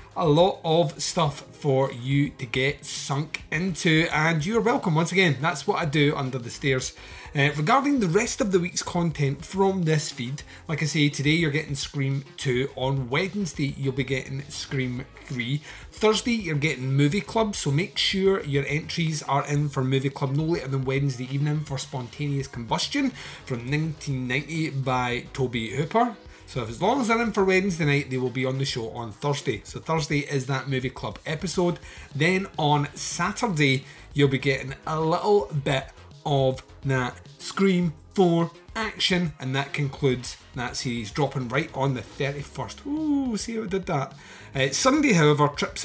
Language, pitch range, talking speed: English, 135-170 Hz, 175 wpm